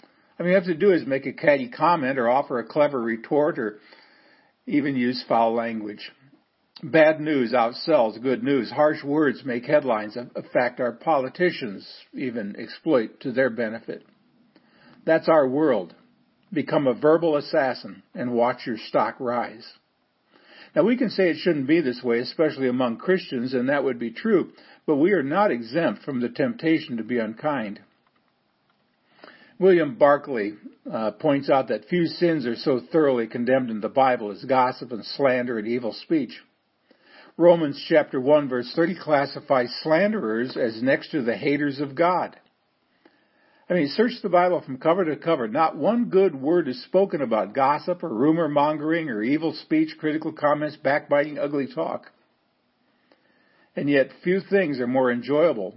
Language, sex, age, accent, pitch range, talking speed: English, male, 50-69, American, 125-180 Hz, 160 wpm